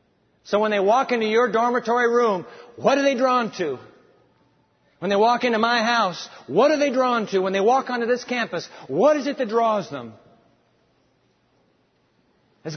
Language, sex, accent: English, male, American